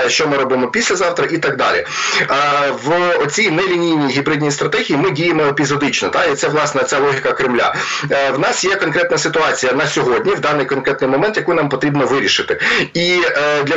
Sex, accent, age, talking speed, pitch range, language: male, native, 30-49, 170 wpm, 140-165 Hz, Ukrainian